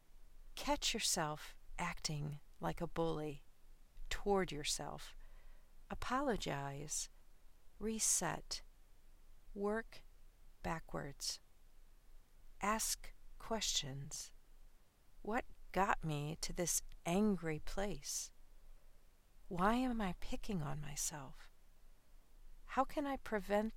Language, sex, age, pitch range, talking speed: English, female, 40-59, 145-200 Hz, 80 wpm